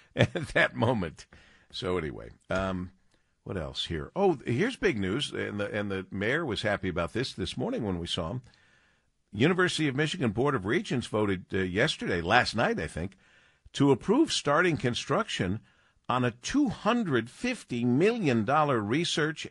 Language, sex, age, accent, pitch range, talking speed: English, male, 50-69, American, 90-130 Hz, 155 wpm